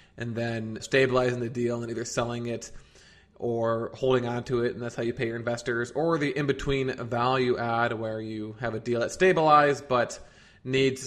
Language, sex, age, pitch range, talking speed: English, male, 20-39, 120-130 Hz, 190 wpm